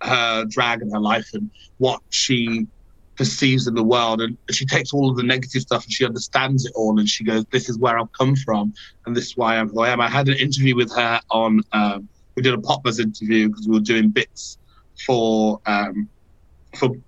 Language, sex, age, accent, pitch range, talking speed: English, male, 30-49, British, 110-135 Hz, 220 wpm